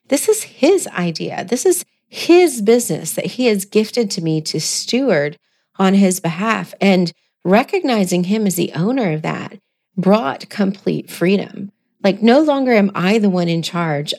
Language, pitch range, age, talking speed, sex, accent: English, 175-245 Hz, 40-59, 165 wpm, female, American